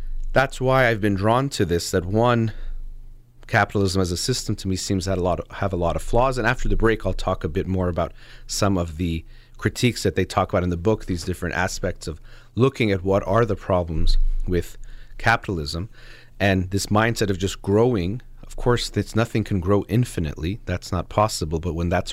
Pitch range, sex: 90-115 Hz, male